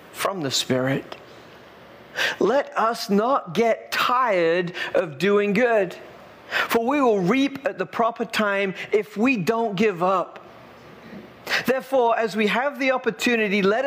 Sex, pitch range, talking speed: male, 185-245 Hz, 135 wpm